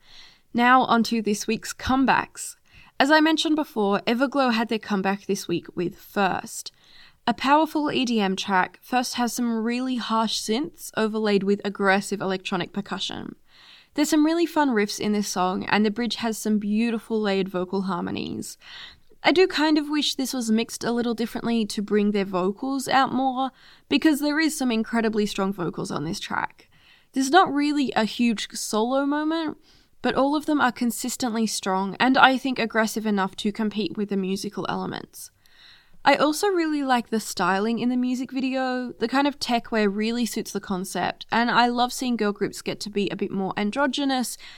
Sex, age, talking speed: female, 10-29, 180 wpm